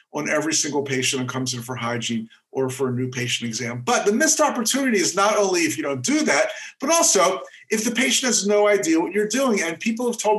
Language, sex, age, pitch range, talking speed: English, male, 50-69, 140-210 Hz, 245 wpm